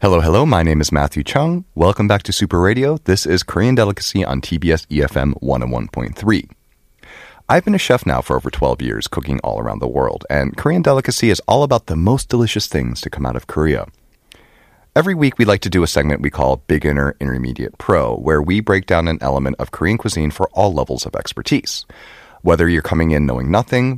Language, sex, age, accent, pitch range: Korean, male, 30-49, American, 75-120 Hz